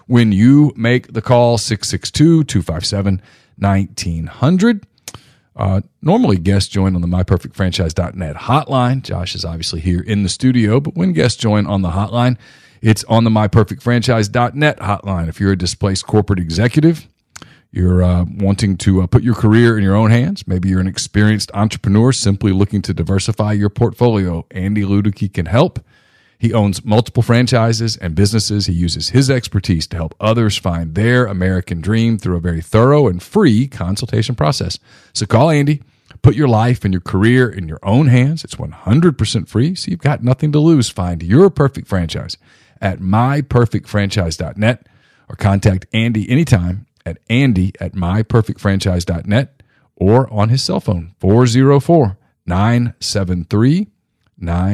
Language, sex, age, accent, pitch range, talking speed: English, male, 40-59, American, 95-125 Hz, 145 wpm